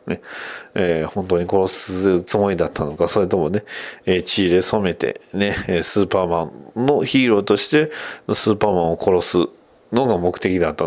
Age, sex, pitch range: 40-59, male, 85-105 Hz